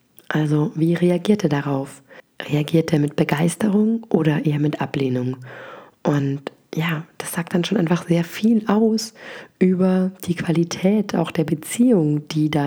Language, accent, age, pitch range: German, German, 30-49, 155-195 Hz